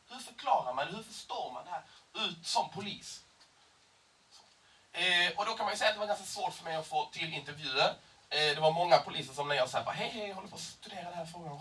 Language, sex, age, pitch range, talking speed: Swedish, male, 30-49, 135-180 Hz, 250 wpm